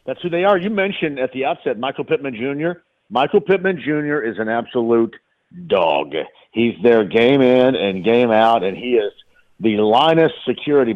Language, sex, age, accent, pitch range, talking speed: English, male, 50-69, American, 115-175 Hz, 175 wpm